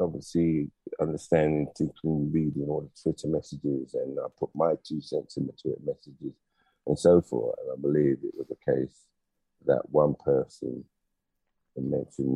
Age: 50-69